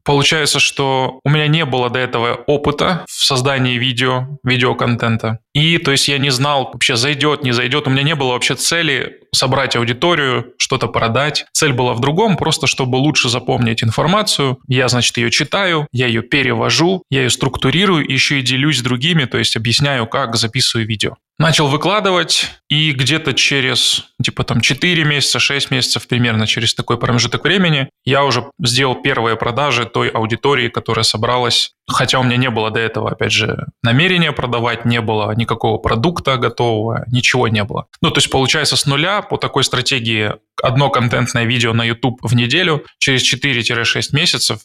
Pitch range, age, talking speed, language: 120-140 Hz, 20-39, 170 wpm, Russian